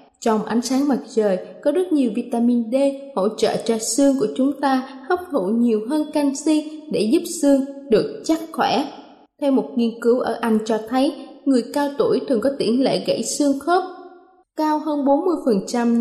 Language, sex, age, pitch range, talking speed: Vietnamese, female, 20-39, 230-290 Hz, 185 wpm